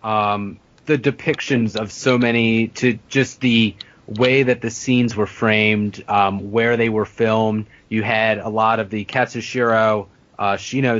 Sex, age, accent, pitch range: male, 30-49, American, 105-125 Hz